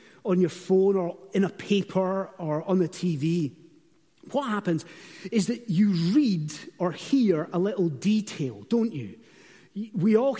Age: 30-49